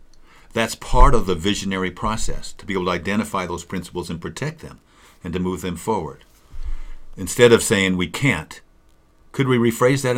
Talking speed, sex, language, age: 175 wpm, male, English, 50-69